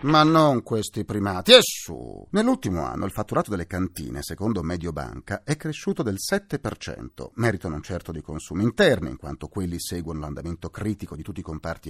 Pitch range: 85-130 Hz